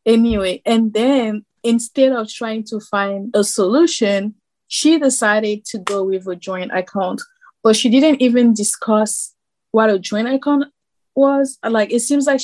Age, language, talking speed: 20-39, English, 155 wpm